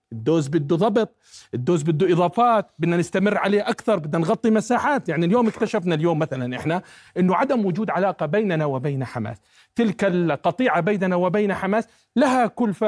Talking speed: 155 wpm